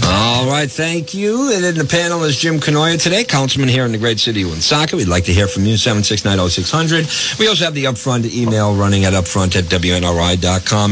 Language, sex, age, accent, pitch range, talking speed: English, male, 50-69, American, 95-115 Hz, 210 wpm